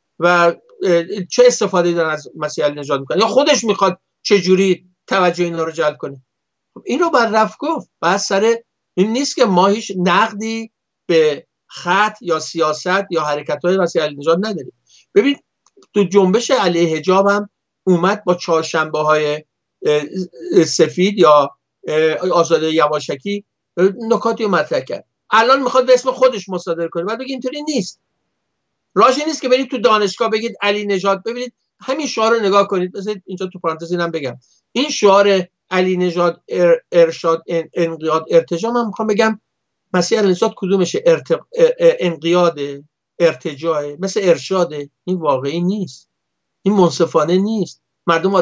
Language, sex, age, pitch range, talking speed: Persian, male, 50-69, 170-220 Hz, 140 wpm